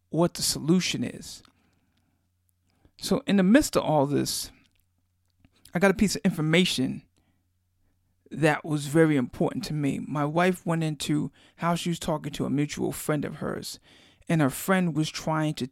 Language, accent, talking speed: English, American, 165 wpm